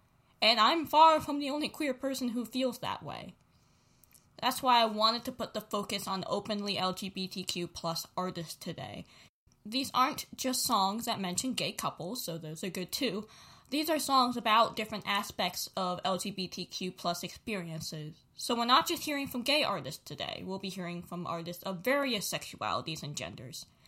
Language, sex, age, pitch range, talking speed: English, female, 20-39, 185-245 Hz, 170 wpm